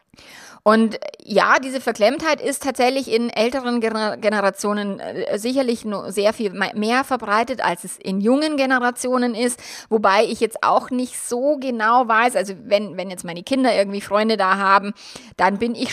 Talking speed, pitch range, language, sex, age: 160 wpm, 190-245 Hz, German, female, 30-49